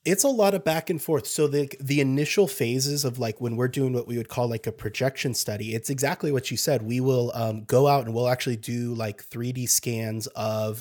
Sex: male